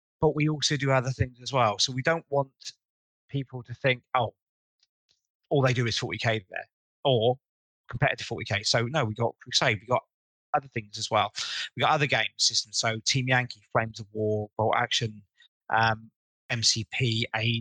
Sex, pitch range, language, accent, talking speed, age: male, 115-145 Hz, English, British, 180 wpm, 30-49